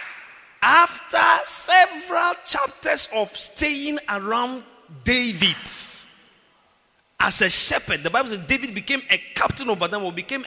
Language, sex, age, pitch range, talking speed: English, male, 40-59, 190-280 Hz, 120 wpm